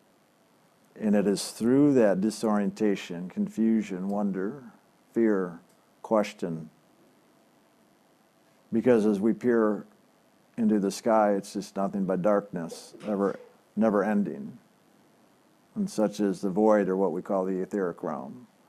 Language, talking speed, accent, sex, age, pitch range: English, 115 wpm, American, male, 60-79, 100-115 Hz